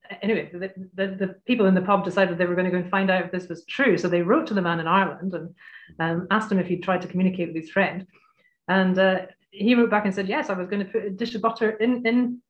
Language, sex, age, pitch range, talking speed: English, female, 30-49, 185-220 Hz, 295 wpm